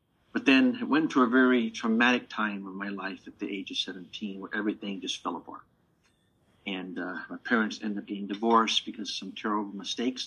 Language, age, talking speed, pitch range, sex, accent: English, 50-69, 205 wpm, 100-125 Hz, male, American